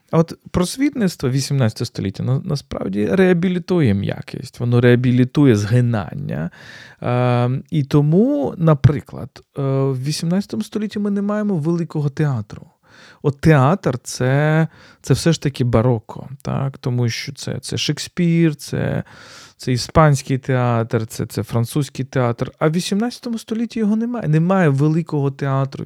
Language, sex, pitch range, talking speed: Ukrainian, male, 125-165 Hz, 125 wpm